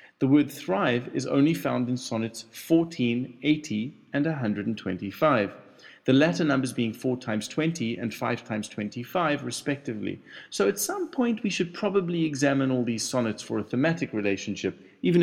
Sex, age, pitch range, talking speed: male, 30-49, 115-150 Hz, 160 wpm